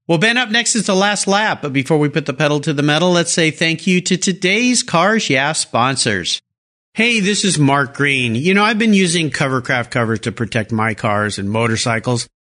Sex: male